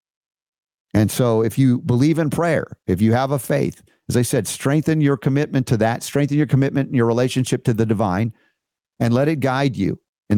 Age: 50-69